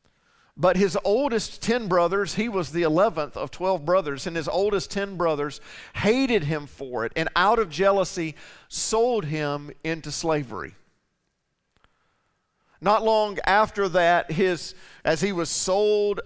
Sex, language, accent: male, English, American